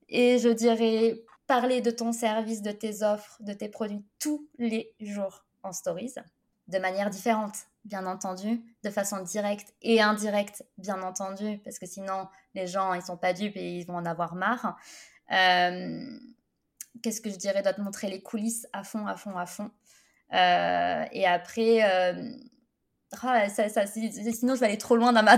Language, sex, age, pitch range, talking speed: French, female, 20-39, 205-250 Hz, 180 wpm